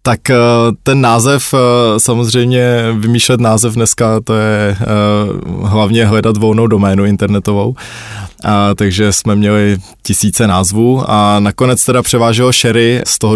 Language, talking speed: Czech, 120 wpm